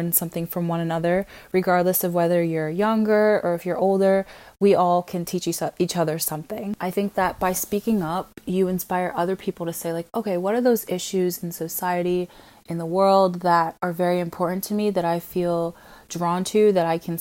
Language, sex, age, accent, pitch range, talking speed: English, female, 20-39, American, 170-195 Hz, 200 wpm